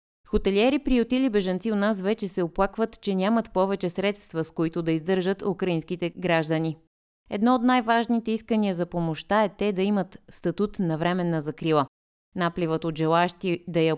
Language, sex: Bulgarian, female